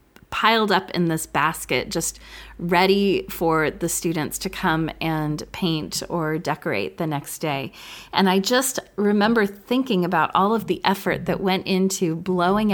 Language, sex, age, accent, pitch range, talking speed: English, female, 30-49, American, 165-210 Hz, 155 wpm